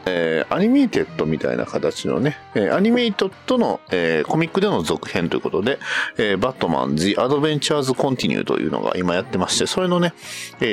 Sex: male